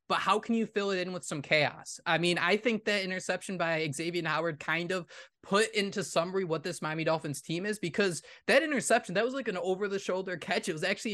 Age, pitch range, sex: 20-39, 170-220 Hz, male